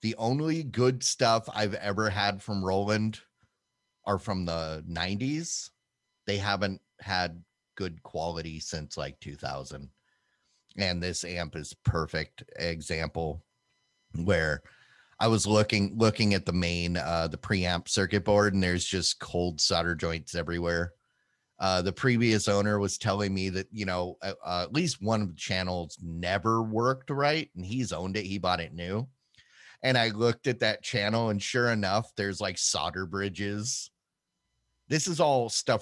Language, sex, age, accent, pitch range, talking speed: English, male, 30-49, American, 90-115 Hz, 155 wpm